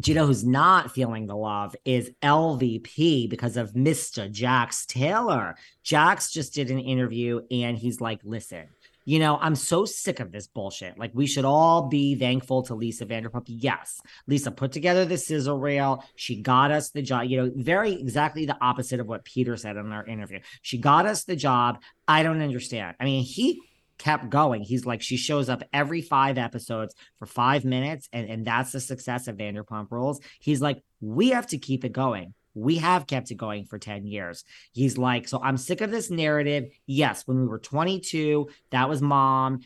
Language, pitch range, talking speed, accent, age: English, 120-150 Hz, 195 wpm, American, 40-59